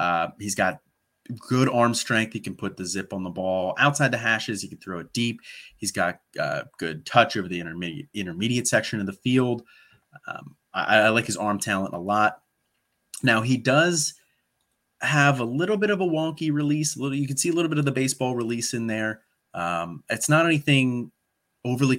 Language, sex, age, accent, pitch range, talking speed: English, male, 30-49, American, 100-130 Hz, 205 wpm